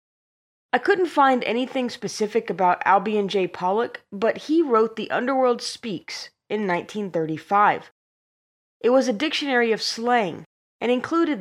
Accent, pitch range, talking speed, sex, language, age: American, 185-255 Hz, 130 wpm, female, English, 20-39